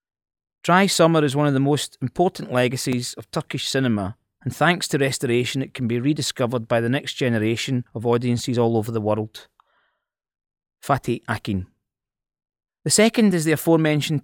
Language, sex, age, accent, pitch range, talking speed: English, male, 20-39, British, 120-150 Hz, 155 wpm